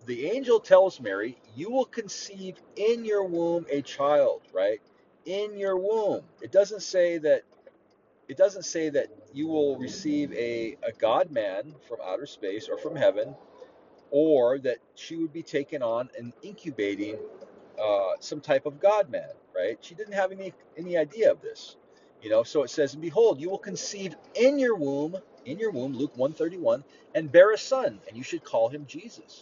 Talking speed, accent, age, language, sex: 180 wpm, American, 40-59, English, male